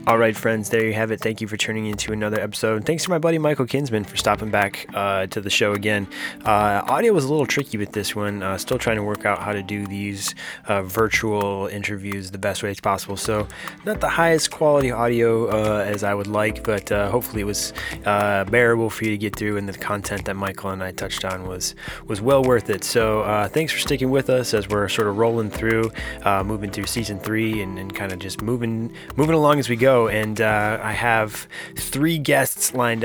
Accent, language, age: American, English, 20-39